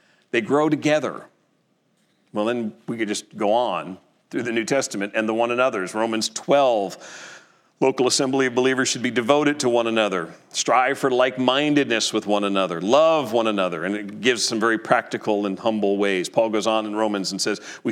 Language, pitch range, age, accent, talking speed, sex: English, 110-135 Hz, 40-59, American, 190 wpm, male